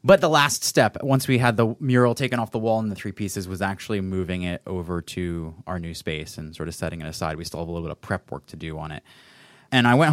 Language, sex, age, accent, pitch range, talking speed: English, male, 20-39, American, 95-125 Hz, 285 wpm